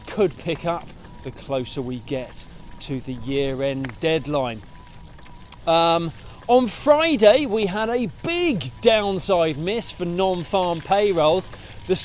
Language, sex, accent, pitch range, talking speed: English, male, British, 140-185 Hz, 120 wpm